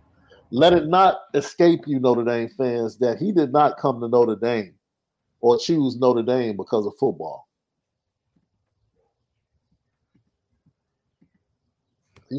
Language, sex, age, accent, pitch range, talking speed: English, male, 50-69, American, 125-150 Hz, 115 wpm